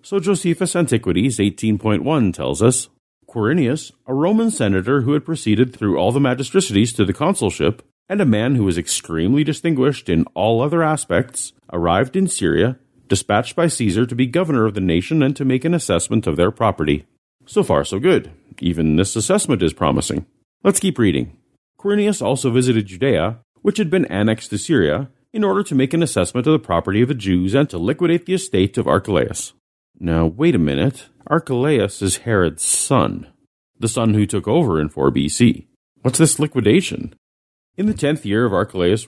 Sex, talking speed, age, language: male, 180 wpm, 40-59, English